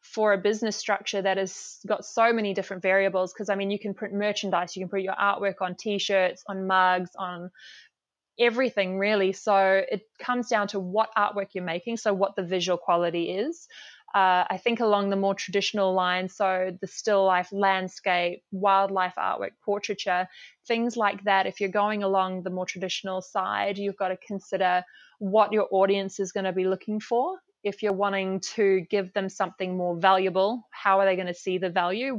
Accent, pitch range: Australian, 185-210 Hz